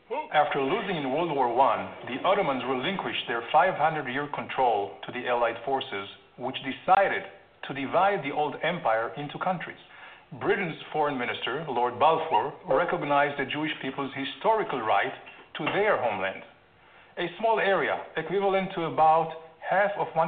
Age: 50-69